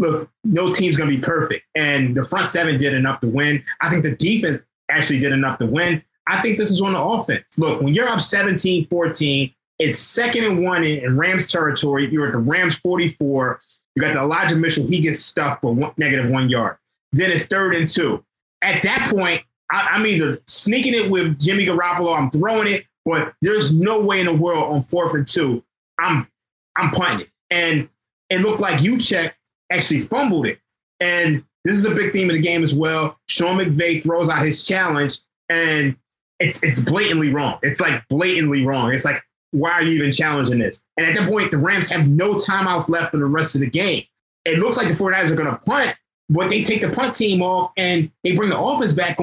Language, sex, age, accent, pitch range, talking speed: English, male, 20-39, American, 150-195 Hz, 215 wpm